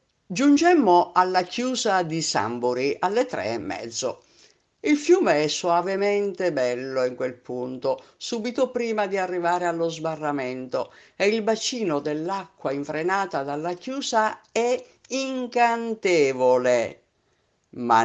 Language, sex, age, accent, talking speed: Italian, female, 50-69, native, 110 wpm